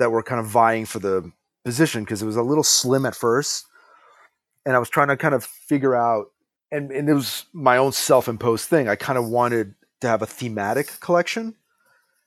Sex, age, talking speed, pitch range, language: male, 30-49, 205 wpm, 115-150 Hz, English